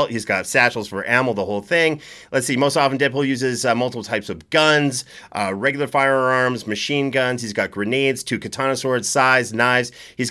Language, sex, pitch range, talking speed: English, male, 120-145 Hz, 190 wpm